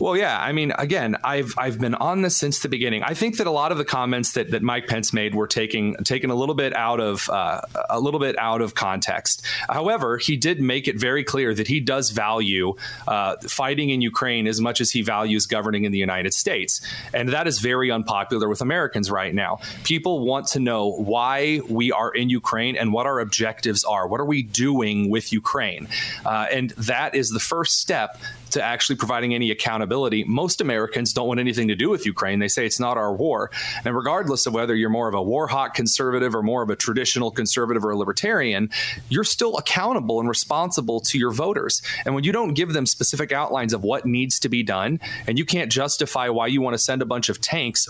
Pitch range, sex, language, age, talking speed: 115-145 Hz, male, English, 30-49, 220 wpm